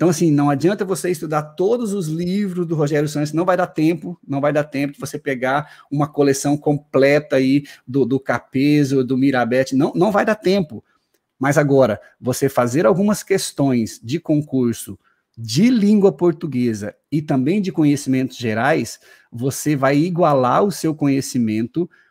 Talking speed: 160 wpm